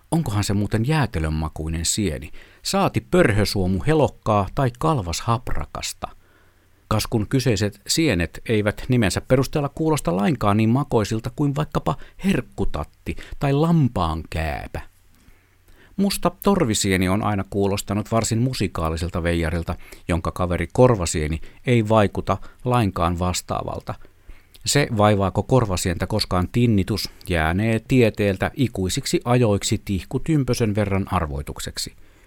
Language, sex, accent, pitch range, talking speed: Finnish, male, native, 90-125 Hz, 100 wpm